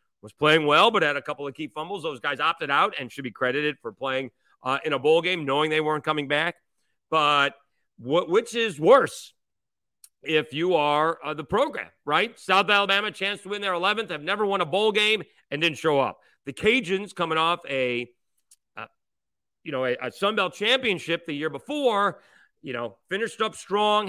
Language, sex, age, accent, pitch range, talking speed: English, male, 40-59, American, 135-190 Hz, 195 wpm